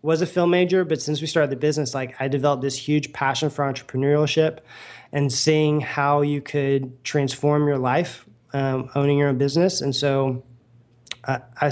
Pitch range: 130-145 Hz